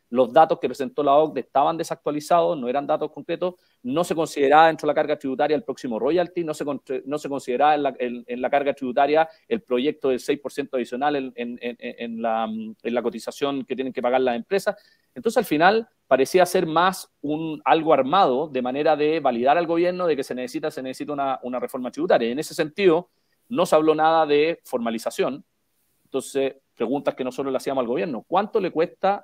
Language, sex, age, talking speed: Spanish, male, 40-59, 205 wpm